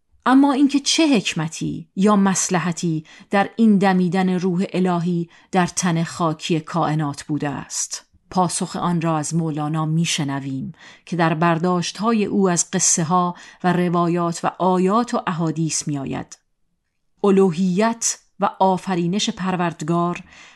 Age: 40-59